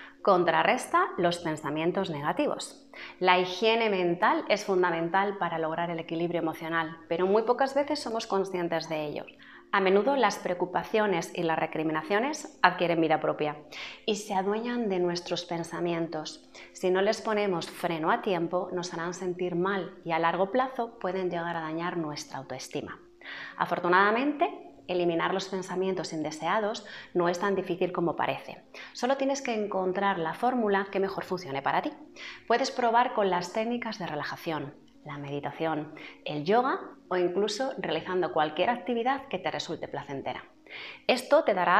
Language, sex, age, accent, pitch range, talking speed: Spanish, female, 30-49, Spanish, 170-220 Hz, 150 wpm